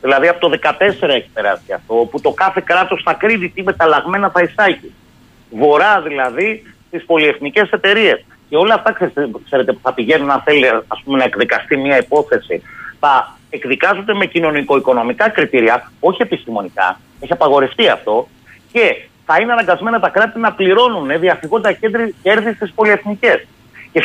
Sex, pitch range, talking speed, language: male, 160-235 Hz, 150 wpm, Greek